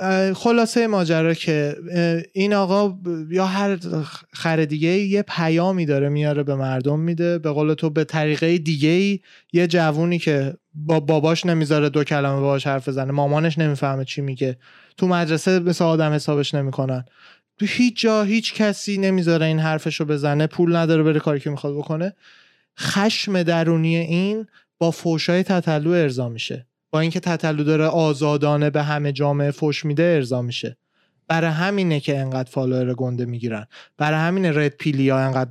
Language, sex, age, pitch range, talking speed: Persian, male, 20-39, 145-175 Hz, 155 wpm